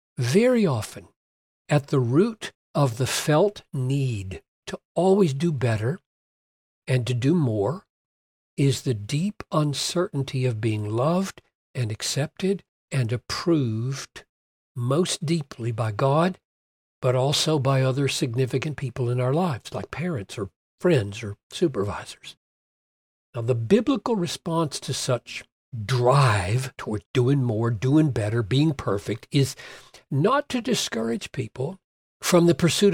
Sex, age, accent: male, 60-79, American